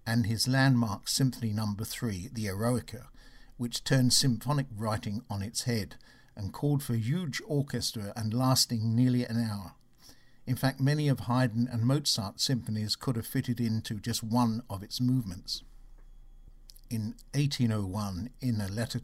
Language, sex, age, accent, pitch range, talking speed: English, male, 60-79, British, 110-130 Hz, 150 wpm